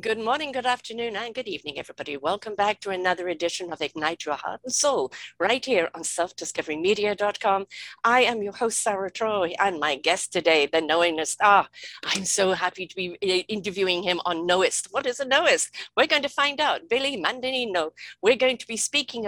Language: English